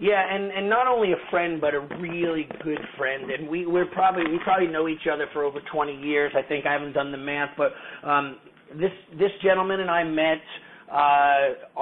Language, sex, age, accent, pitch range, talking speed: English, male, 40-59, American, 145-175 Hz, 210 wpm